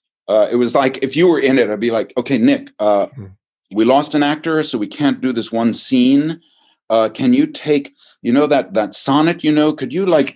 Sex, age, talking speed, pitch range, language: male, 50-69, 230 wpm, 115-160 Hz, English